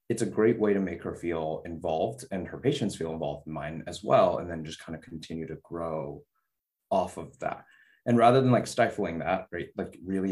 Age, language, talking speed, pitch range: 20-39, English, 220 wpm, 85-115 Hz